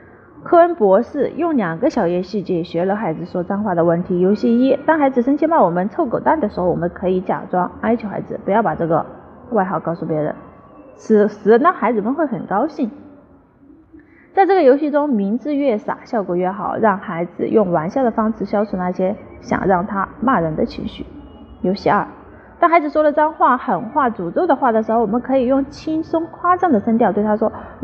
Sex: female